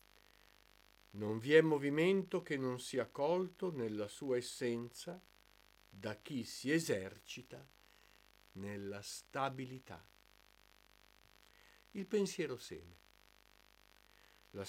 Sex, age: male, 50-69